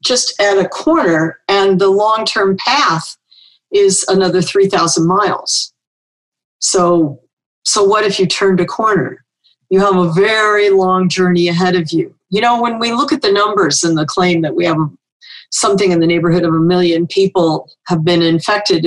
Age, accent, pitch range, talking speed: 50-69, American, 175-225 Hz, 170 wpm